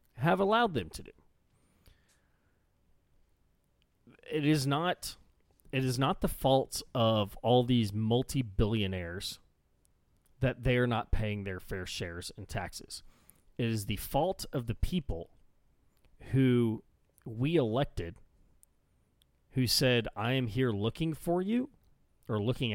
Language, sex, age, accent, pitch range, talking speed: English, male, 30-49, American, 95-130 Hz, 125 wpm